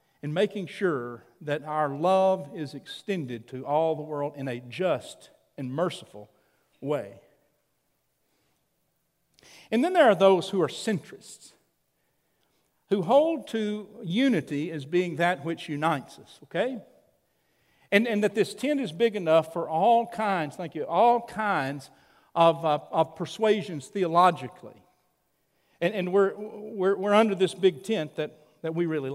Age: 50-69